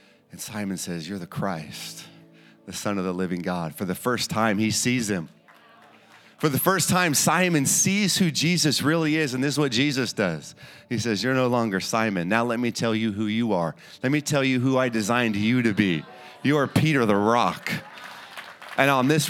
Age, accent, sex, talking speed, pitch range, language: 30-49, American, male, 210 wpm, 105-135 Hz, English